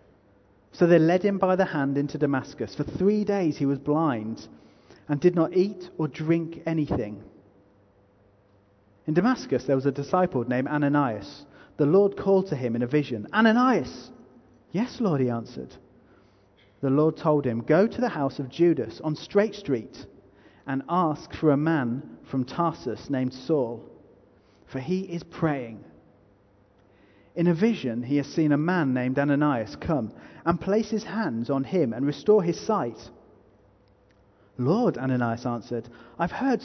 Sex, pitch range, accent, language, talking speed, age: male, 115-185 Hz, British, English, 155 wpm, 30-49